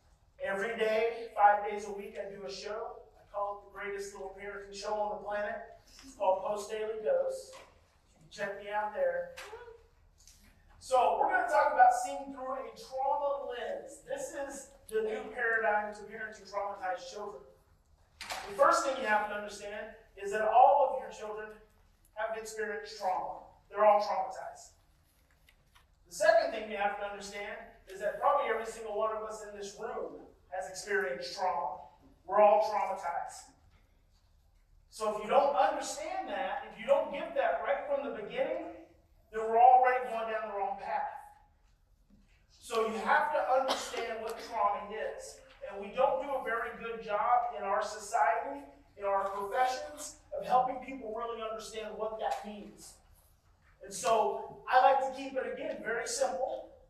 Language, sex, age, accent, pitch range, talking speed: English, male, 30-49, American, 200-265 Hz, 165 wpm